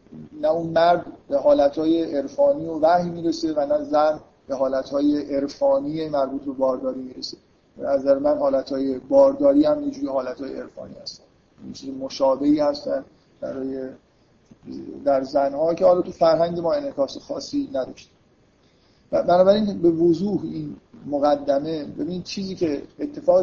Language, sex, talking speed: Persian, male, 140 wpm